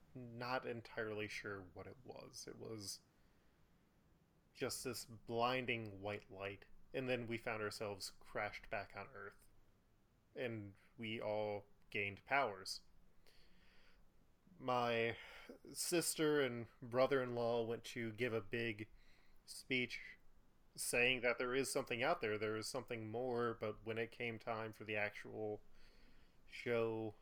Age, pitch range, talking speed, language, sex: 20-39, 105-125 Hz, 125 wpm, English, male